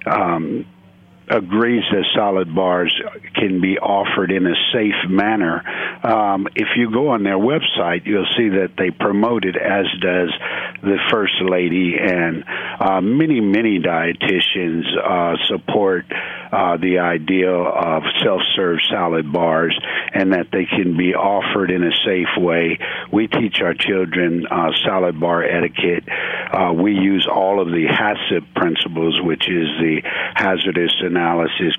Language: English